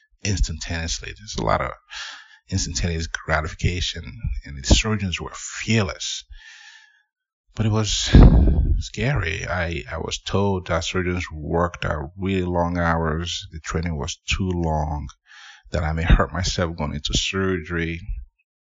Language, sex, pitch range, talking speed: English, male, 80-95 Hz, 125 wpm